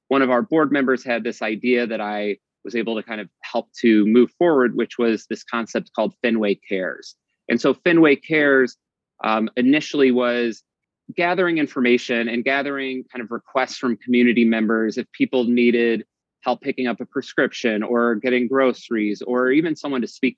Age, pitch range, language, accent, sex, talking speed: 30-49, 110-130 Hz, English, American, male, 175 wpm